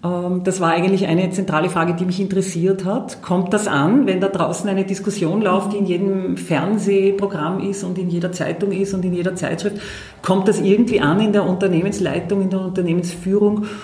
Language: German